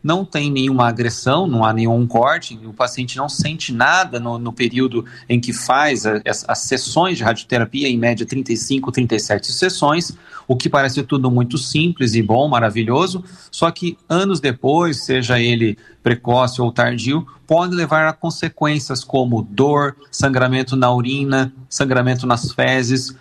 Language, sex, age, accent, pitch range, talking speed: Portuguese, male, 40-59, Brazilian, 120-160 Hz, 155 wpm